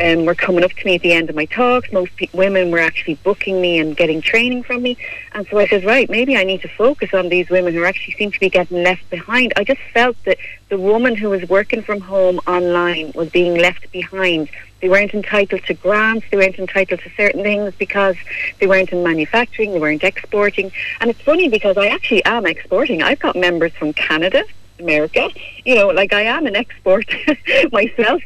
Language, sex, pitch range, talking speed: English, female, 180-225 Hz, 215 wpm